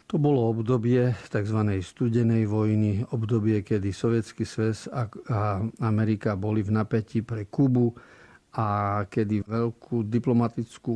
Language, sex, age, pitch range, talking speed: Slovak, male, 50-69, 105-115 Hz, 115 wpm